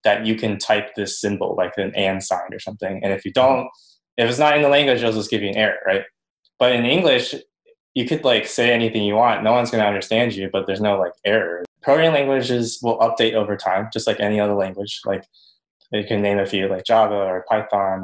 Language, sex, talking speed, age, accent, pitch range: English, male, 235 wpm, 20-39, American, 100-120 Hz